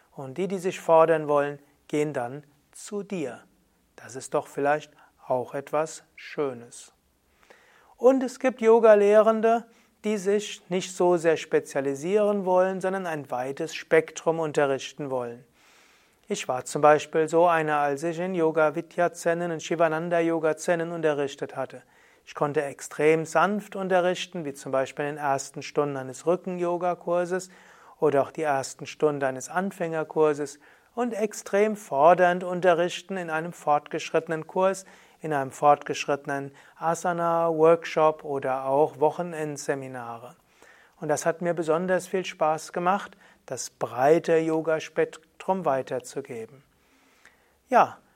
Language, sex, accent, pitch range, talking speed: German, male, German, 145-180 Hz, 125 wpm